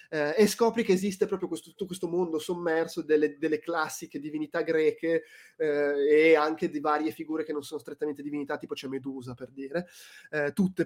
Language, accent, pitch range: Italian, native, 135-165 Hz